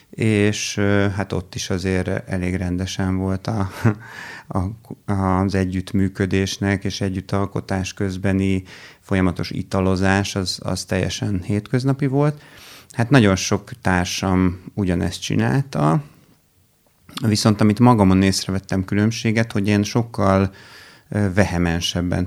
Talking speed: 95 wpm